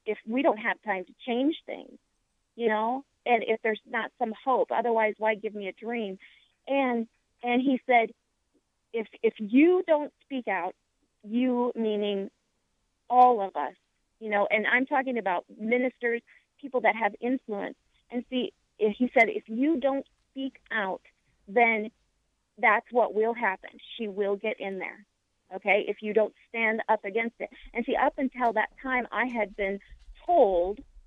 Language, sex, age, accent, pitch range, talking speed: English, female, 40-59, American, 215-265 Hz, 165 wpm